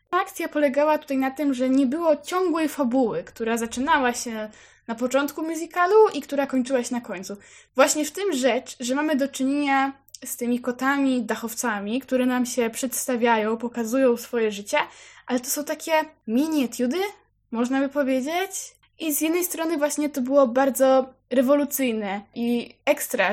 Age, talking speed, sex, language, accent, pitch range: 10-29, 155 wpm, female, Polish, native, 240-285 Hz